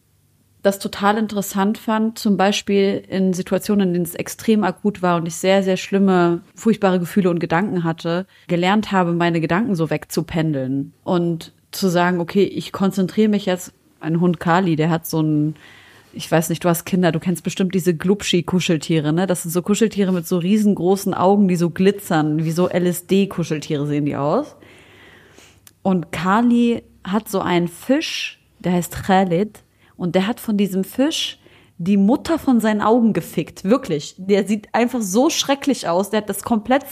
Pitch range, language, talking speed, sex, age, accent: 175-220 Hz, German, 170 wpm, female, 30-49, German